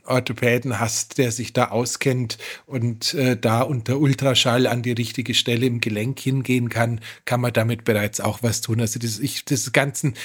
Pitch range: 125-145 Hz